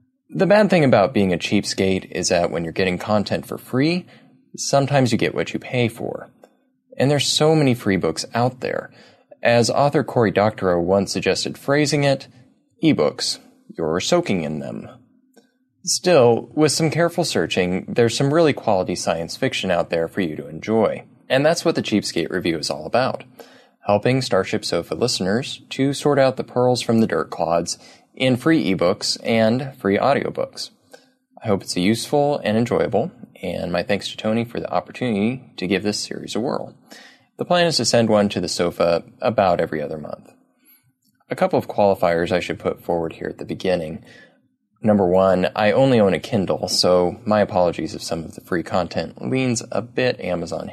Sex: male